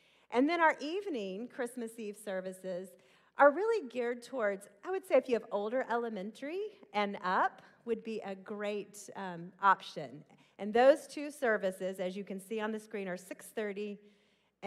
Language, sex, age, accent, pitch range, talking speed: English, female, 40-59, American, 190-250 Hz, 165 wpm